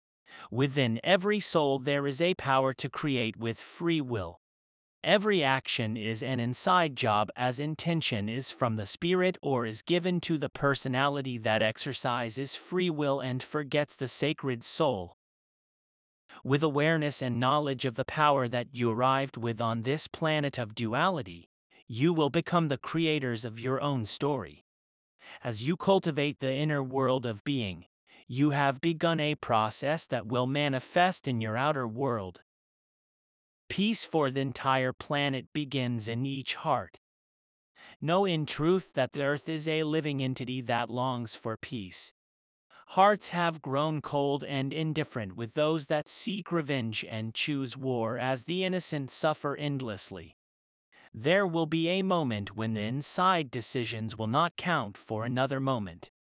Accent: American